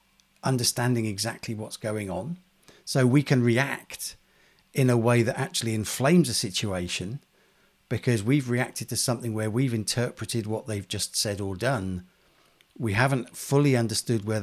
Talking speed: 150 wpm